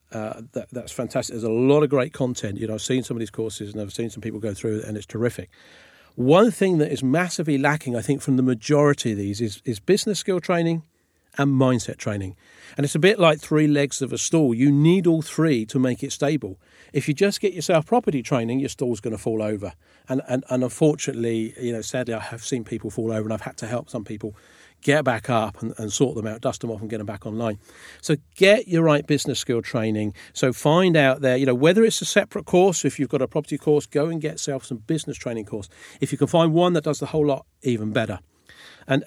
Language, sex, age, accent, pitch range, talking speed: English, male, 40-59, British, 115-150 Hz, 245 wpm